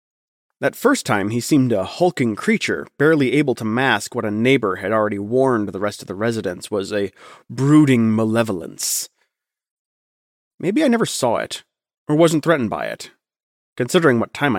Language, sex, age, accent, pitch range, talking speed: English, male, 30-49, American, 105-135 Hz, 165 wpm